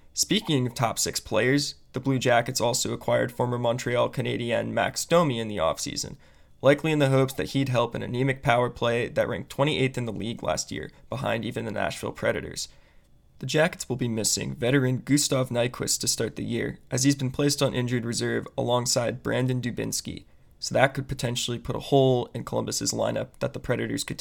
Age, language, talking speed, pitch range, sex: 20-39, English, 195 wpm, 115-140 Hz, male